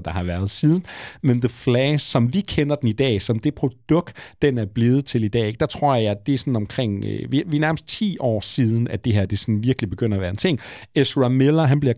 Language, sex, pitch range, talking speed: Danish, male, 105-135 Hz, 240 wpm